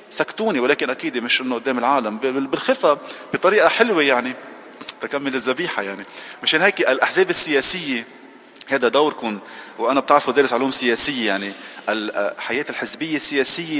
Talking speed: 125 wpm